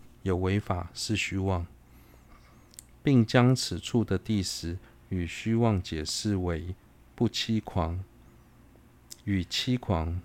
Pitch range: 90-115 Hz